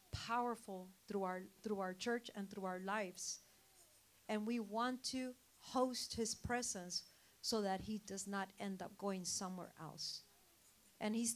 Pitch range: 200-240 Hz